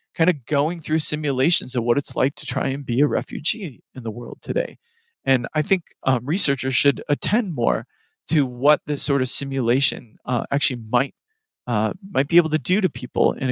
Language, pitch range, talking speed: English, 125-155 Hz, 200 wpm